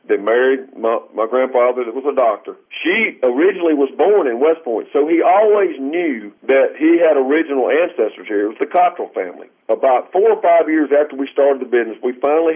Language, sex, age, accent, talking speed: English, male, 50-69, American, 205 wpm